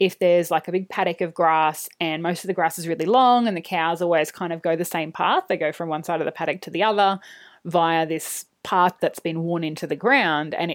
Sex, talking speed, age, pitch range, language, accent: female, 260 wpm, 20-39, 165-205 Hz, English, Australian